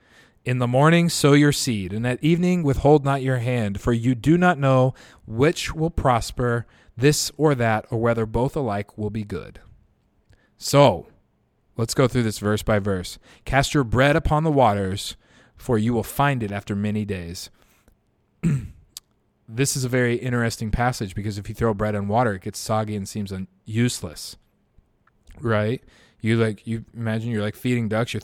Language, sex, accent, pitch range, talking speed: English, male, American, 110-130 Hz, 175 wpm